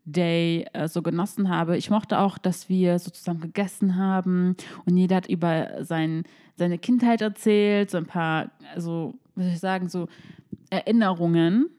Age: 20-39